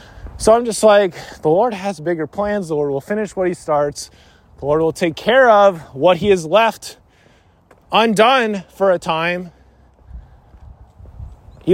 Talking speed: 160 wpm